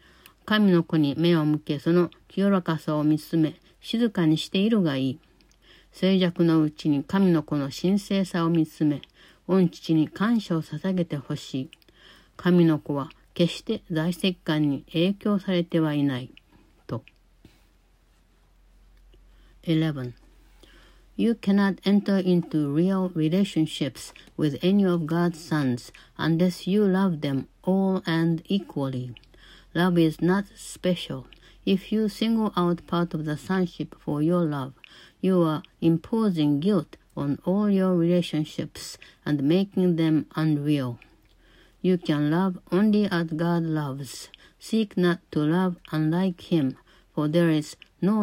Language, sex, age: Japanese, female, 60-79